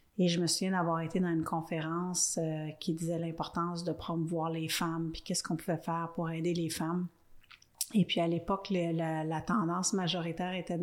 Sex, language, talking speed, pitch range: female, French, 195 wpm, 165-185 Hz